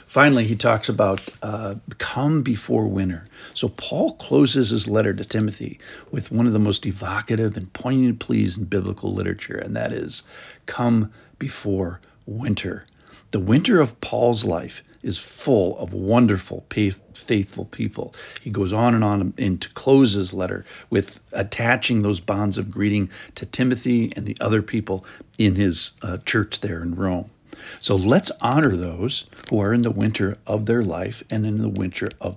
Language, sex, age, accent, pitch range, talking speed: English, male, 60-79, American, 100-120 Hz, 165 wpm